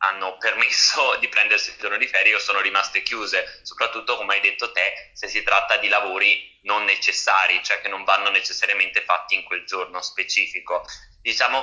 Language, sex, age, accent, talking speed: Italian, male, 20-39, native, 180 wpm